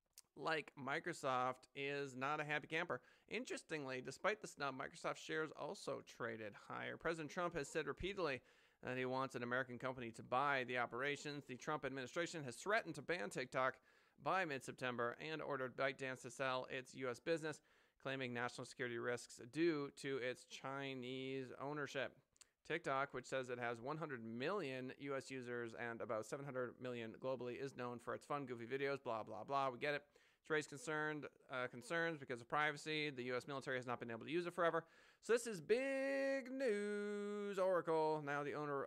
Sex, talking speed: male, 175 wpm